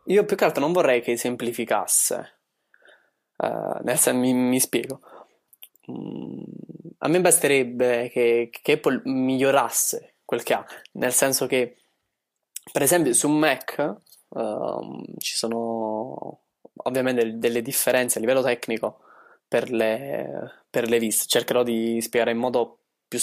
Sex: male